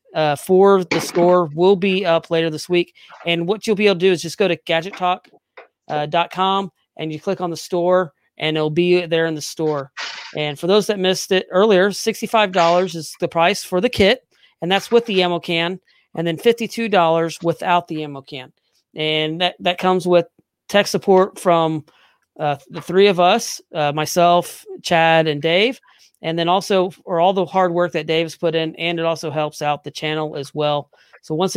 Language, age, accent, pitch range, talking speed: English, 40-59, American, 155-185 Hz, 210 wpm